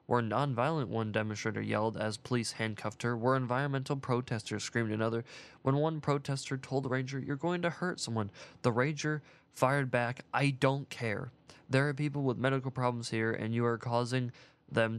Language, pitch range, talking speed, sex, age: English, 110-135 Hz, 175 wpm, male, 20-39